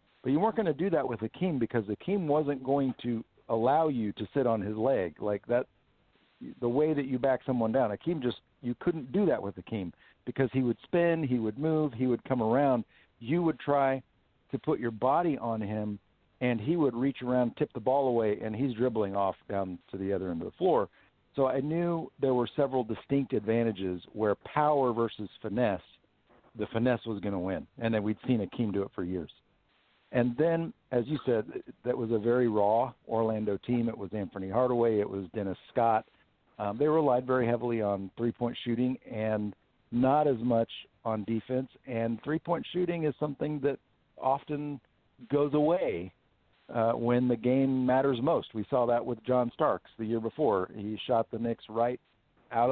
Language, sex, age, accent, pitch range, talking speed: English, male, 50-69, American, 110-140 Hz, 195 wpm